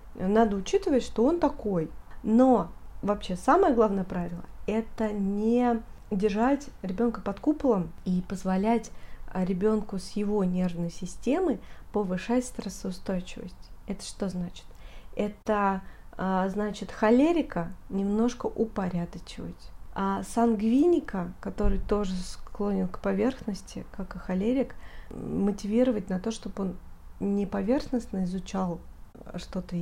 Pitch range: 185-245 Hz